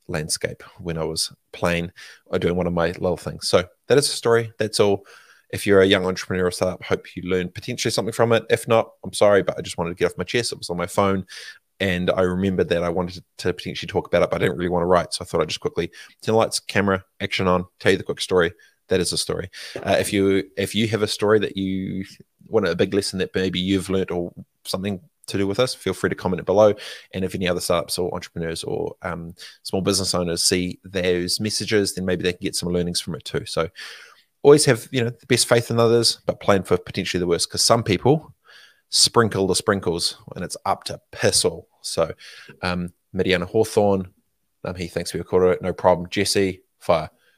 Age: 20-39